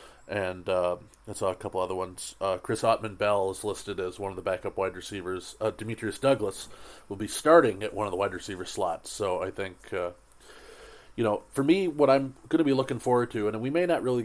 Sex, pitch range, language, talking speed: male, 105-115 Hz, English, 225 wpm